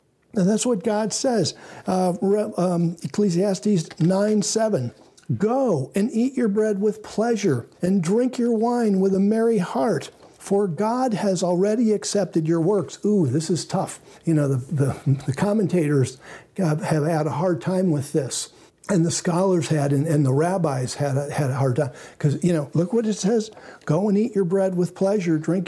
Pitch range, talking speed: 165-215 Hz, 180 wpm